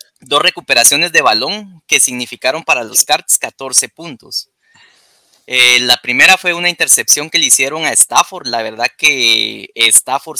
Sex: male